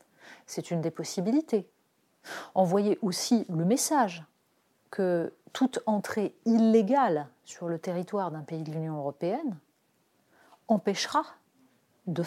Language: French